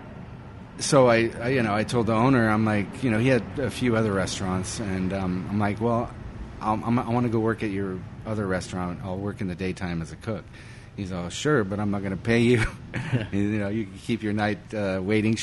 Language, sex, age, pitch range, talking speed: English, male, 30-49, 85-105 Hz, 235 wpm